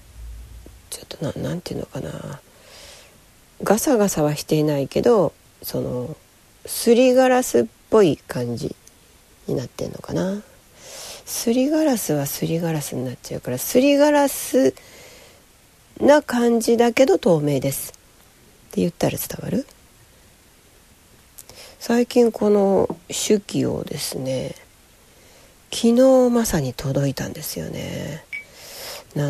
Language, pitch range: Japanese, 140-220 Hz